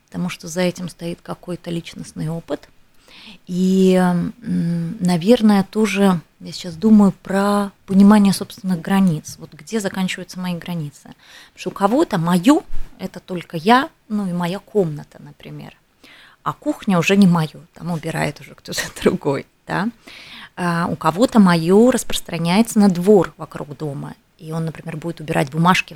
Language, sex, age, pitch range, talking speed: Russian, female, 20-39, 165-200 Hz, 145 wpm